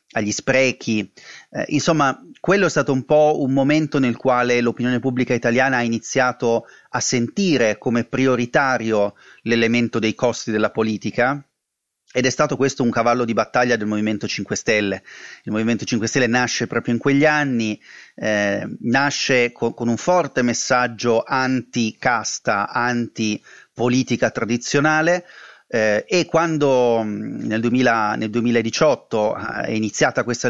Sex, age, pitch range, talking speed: male, 30-49, 115-135 Hz, 140 wpm